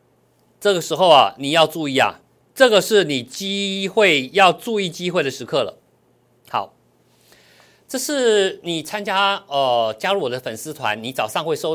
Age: 50-69